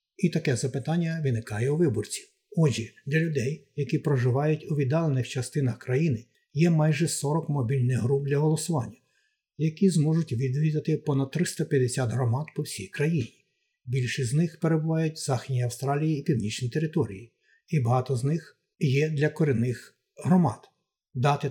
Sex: male